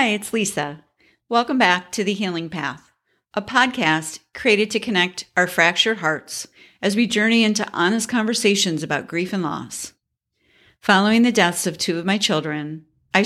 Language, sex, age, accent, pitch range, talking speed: English, female, 50-69, American, 160-205 Hz, 165 wpm